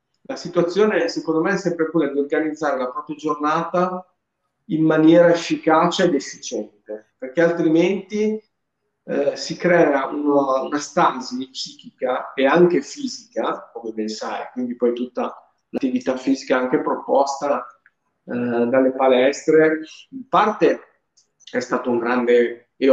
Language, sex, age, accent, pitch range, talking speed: Italian, male, 40-59, native, 125-175 Hz, 130 wpm